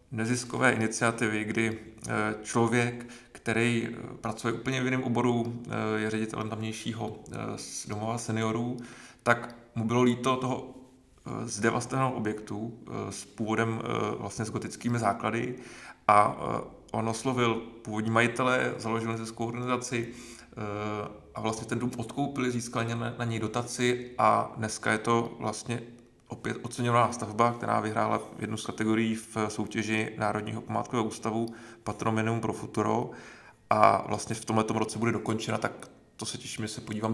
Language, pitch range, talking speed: Czech, 110-120 Hz, 130 wpm